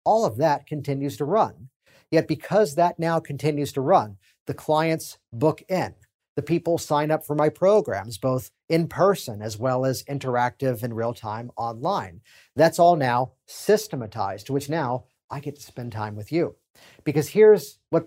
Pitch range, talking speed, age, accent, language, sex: 125-160 Hz, 170 wpm, 40-59, American, English, male